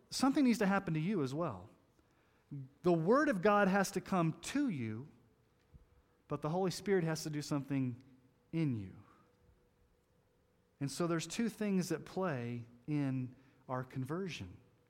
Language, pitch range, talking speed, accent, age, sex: English, 135-185 Hz, 150 wpm, American, 40-59, male